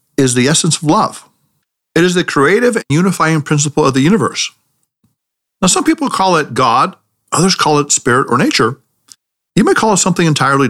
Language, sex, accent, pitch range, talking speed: English, male, American, 125-165 Hz, 185 wpm